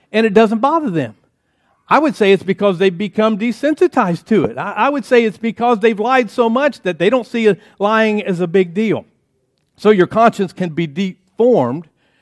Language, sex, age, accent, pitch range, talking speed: English, male, 50-69, American, 160-215 Hz, 190 wpm